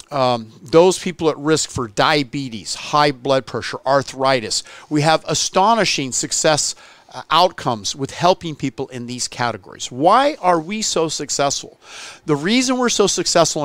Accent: American